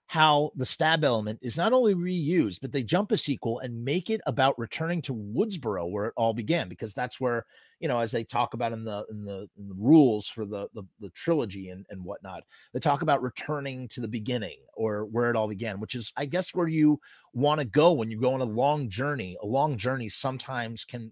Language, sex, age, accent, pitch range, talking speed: English, male, 30-49, American, 115-150 Hz, 225 wpm